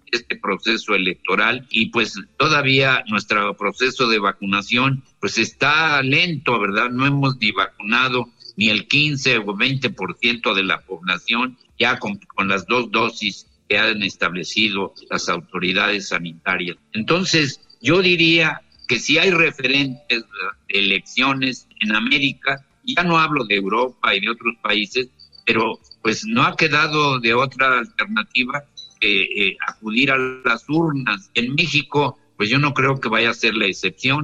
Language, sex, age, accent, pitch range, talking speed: Spanish, male, 60-79, Mexican, 105-135 Hz, 150 wpm